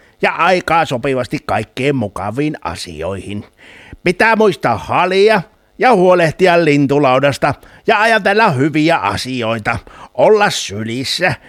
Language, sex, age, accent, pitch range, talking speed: Finnish, male, 60-79, native, 110-165 Hz, 95 wpm